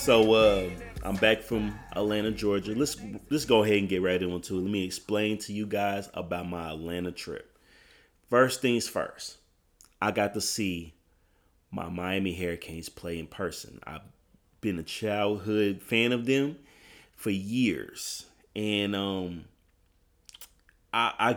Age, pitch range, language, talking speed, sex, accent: 30-49, 95-120 Hz, English, 145 wpm, male, American